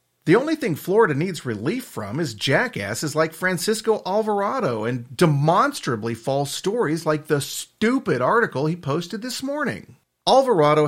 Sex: male